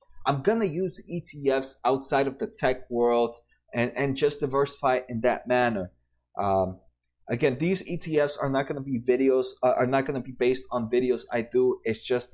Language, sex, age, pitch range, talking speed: English, male, 20-39, 120-150 Hz, 195 wpm